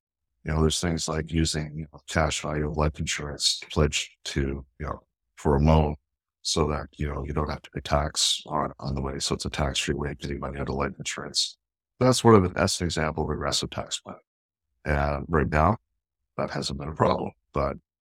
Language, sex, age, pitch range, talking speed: English, male, 60-79, 75-90 Hz, 230 wpm